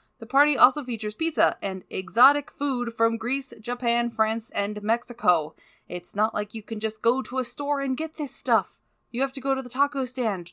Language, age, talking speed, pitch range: English, 20-39, 205 wpm, 185-255 Hz